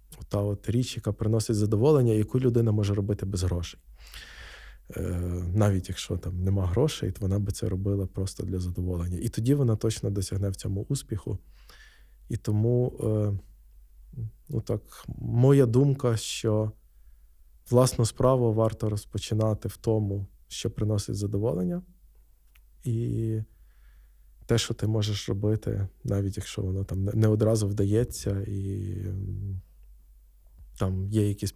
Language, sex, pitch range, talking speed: Ukrainian, male, 95-115 Hz, 125 wpm